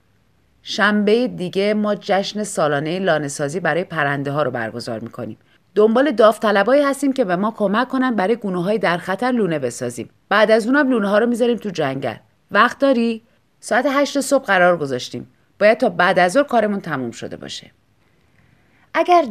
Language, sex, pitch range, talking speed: Persian, female, 165-245 Hz, 160 wpm